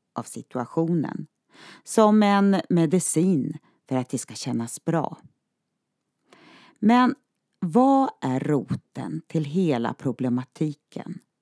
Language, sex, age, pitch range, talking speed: Swedish, female, 40-59, 135-195 Hz, 95 wpm